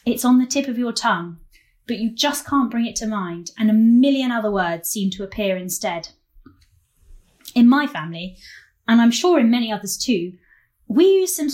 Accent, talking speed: British, 190 wpm